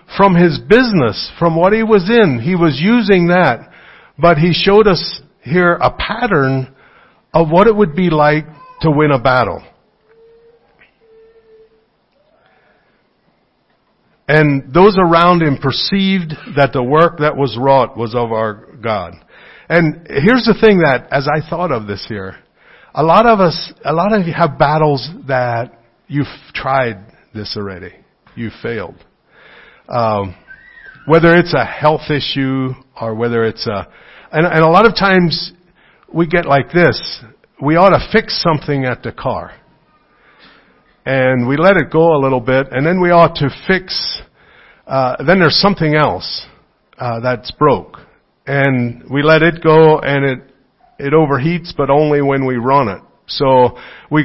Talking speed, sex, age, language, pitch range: 155 wpm, male, 60-79, English, 130-175 Hz